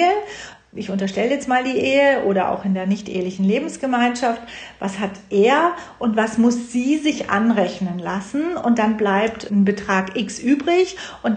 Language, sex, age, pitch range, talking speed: German, female, 40-59, 205-255 Hz, 160 wpm